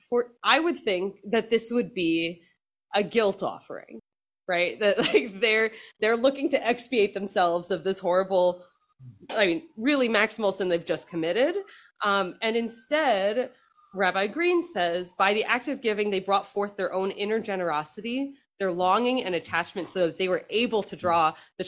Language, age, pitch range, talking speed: English, 20-39, 170-225 Hz, 165 wpm